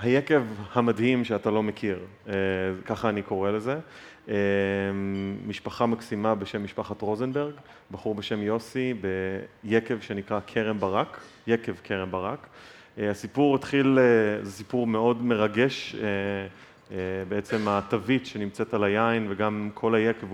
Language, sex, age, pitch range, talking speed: Hebrew, male, 30-49, 100-115 Hz, 125 wpm